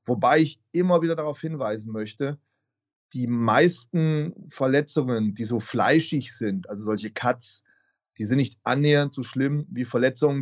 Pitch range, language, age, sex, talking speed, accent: 110-140 Hz, German, 30-49, male, 145 wpm, German